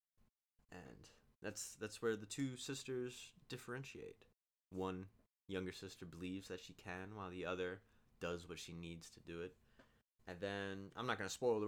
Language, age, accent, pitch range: English, 20-39, American, 90-120 Hz